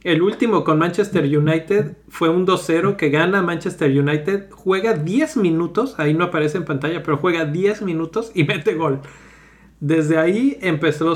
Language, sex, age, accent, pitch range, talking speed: Spanish, male, 40-59, Mexican, 145-180 Hz, 160 wpm